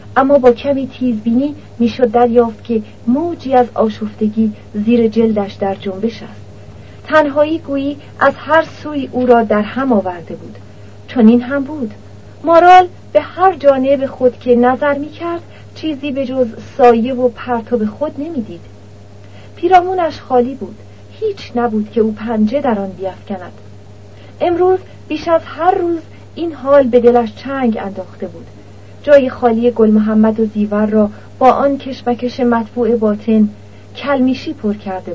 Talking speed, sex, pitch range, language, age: 145 wpm, female, 210-280 Hz, Persian, 40-59